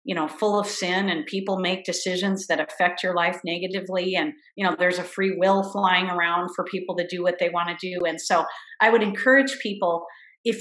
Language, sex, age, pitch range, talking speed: English, female, 40-59, 180-230 Hz, 220 wpm